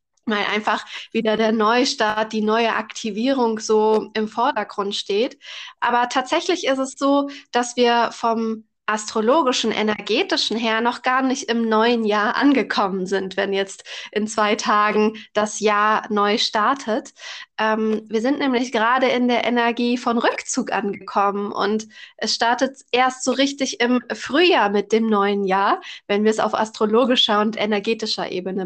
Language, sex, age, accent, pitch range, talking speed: German, female, 20-39, German, 215-265 Hz, 150 wpm